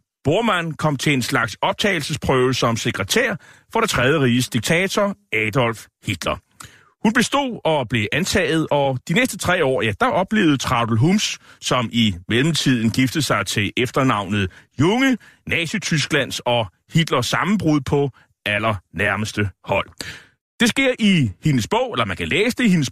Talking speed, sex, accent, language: 150 wpm, male, native, Danish